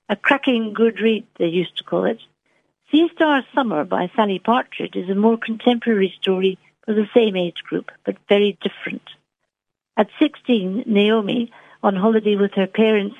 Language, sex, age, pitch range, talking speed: English, female, 60-79, 190-230 Hz, 165 wpm